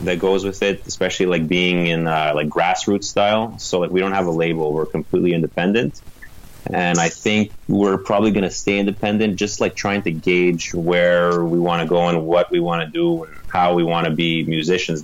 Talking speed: 215 wpm